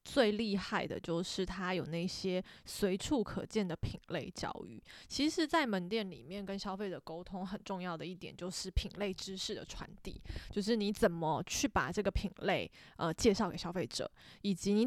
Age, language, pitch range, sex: 20-39, Chinese, 180-220 Hz, female